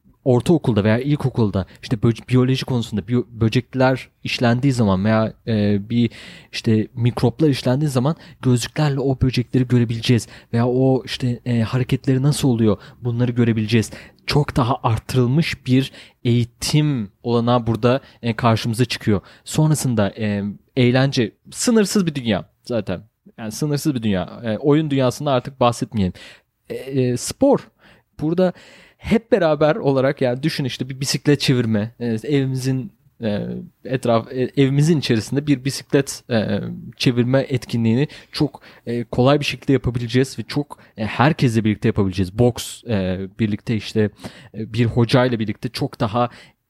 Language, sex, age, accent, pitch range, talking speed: Turkish, male, 30-49, native, 110-135 Hz, 115 wpm